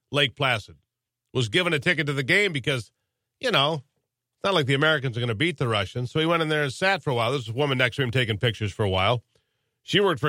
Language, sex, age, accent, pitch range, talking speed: English, male, 50-69, American, 120-150 Hz, 280 wpm